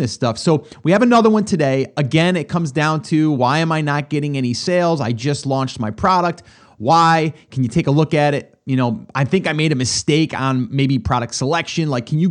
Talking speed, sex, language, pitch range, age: 235 wpm, male, English, 130-180 Hz, 30-49